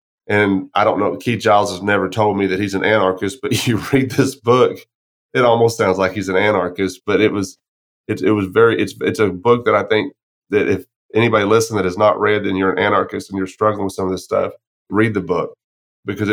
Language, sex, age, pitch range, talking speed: English, male, 30-49, 95-115 Hz, 235 wpm